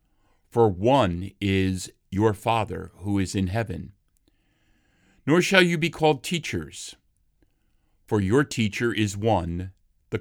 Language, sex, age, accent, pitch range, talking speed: English, male, 50-69, American, 95-115 Hz, 125 wpm